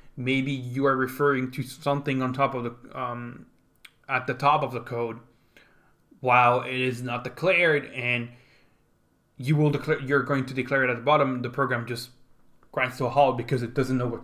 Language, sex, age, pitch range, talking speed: English, male, 20-39, 120-140 Hz, 195 wpm